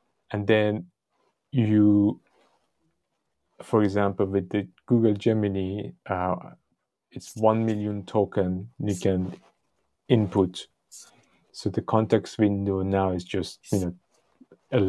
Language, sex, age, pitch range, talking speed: English, male, 30-49, 95-110 Hz, 110 wpm